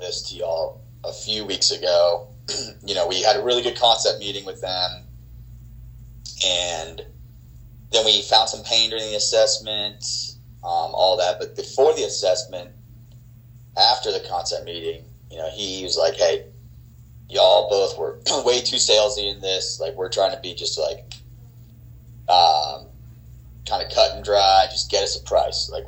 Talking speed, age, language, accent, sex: 165 wpm, 30-49, English, American, male